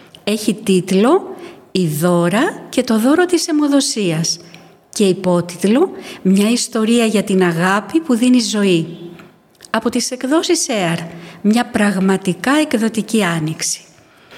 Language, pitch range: Greek, 185-240 Hz